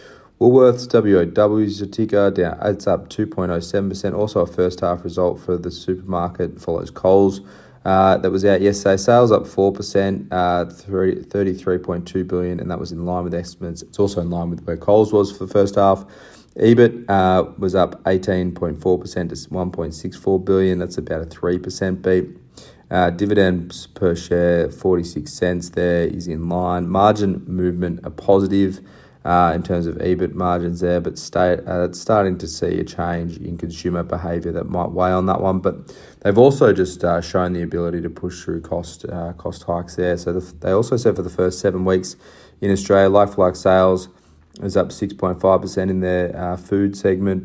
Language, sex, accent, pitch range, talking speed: English, male, Australian, 90-95 Hz, 200 wpm